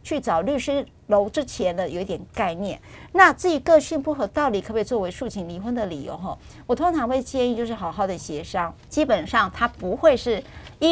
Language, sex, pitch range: Chinese, female, 195-275 Hz